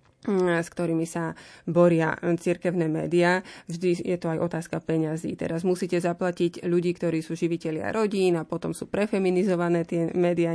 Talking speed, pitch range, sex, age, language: 150 wpm, 170-185 Hz, female, 30-49, Slovak